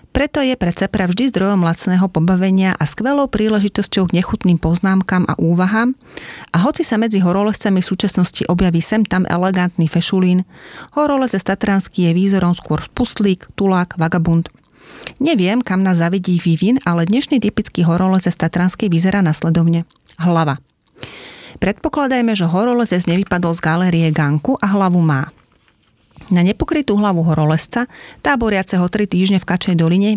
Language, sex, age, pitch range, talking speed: Slovak, female, 30-49, 175-215 Hz, 135 wpm